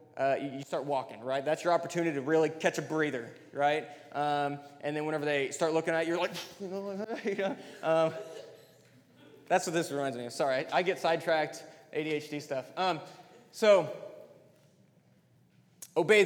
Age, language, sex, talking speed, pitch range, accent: 20-39, English, male, 160 wpm, 150-200 Hz, American